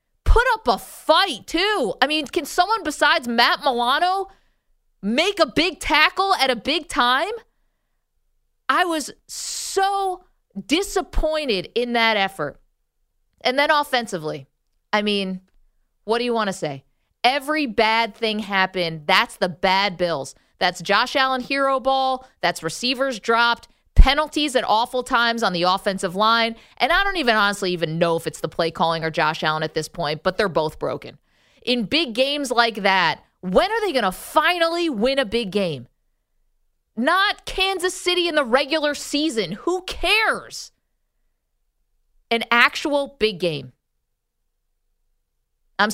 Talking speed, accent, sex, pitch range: 150 wpm, American, female, 195-310 Hz